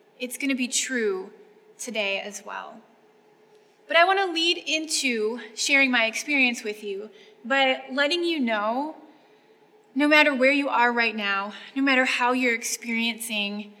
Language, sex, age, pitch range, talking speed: English, female, 20-39, 215-260 Hz, 145 wpm